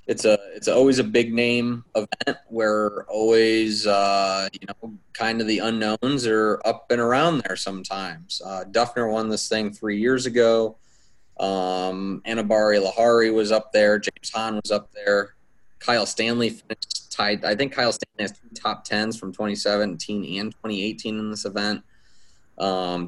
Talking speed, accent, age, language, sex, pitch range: 160 wpm, American, 20-39, English, male, 95-110 Hz